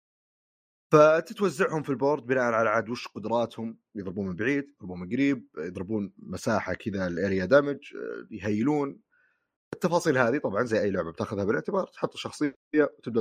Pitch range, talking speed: 100-140 Hz, 140 wpm